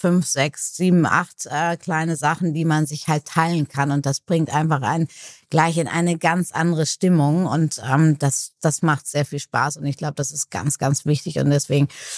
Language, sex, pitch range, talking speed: German, female, 150-165 Hz, 205 wpm